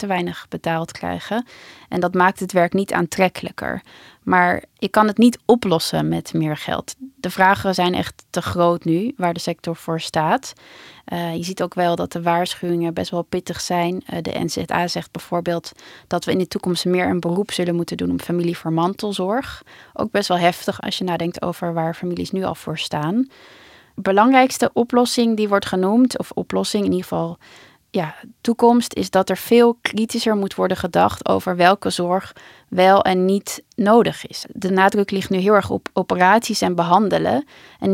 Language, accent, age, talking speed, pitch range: Dutch, Dutch, 20-39, 185 wpm, 175-210 Hz